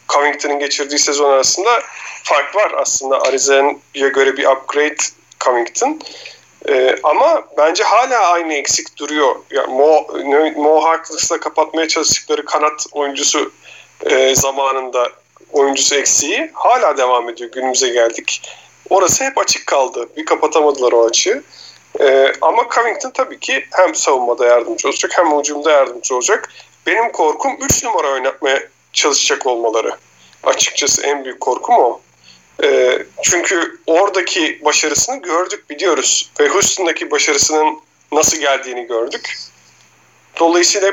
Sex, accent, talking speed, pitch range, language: male, native, 120 wpm, 135-180 Hz, Turkish